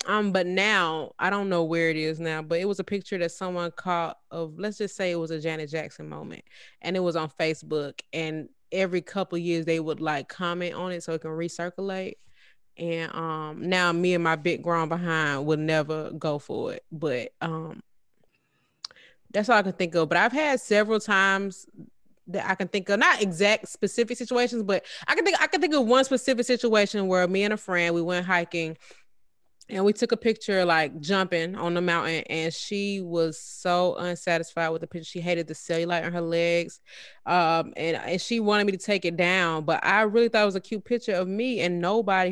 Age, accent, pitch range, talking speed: 20-39, American, 165-210 Hz, 215 wpm